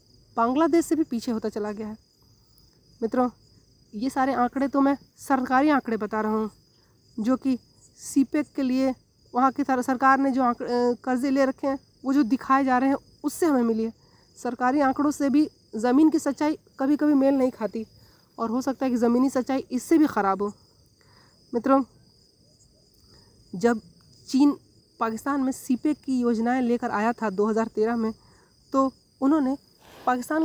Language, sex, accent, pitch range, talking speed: Hindi, female, native, 225-275 Hz, 165 wpm